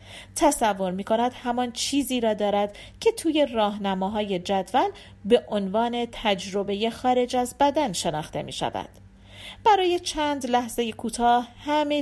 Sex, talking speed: female, 120 wpm